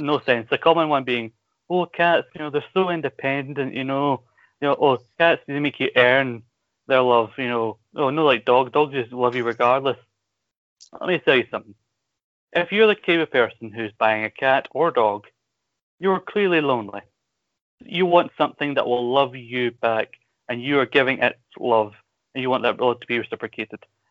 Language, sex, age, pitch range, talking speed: English, male, 30-49, 115-140 Hz, 195 wpm